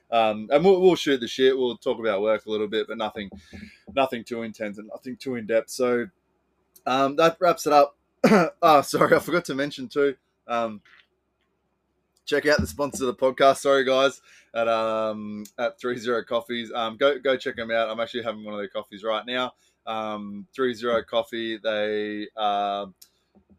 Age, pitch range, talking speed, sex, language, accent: 20-39, 110-130 Hz, 190 wpm, male, English, Australian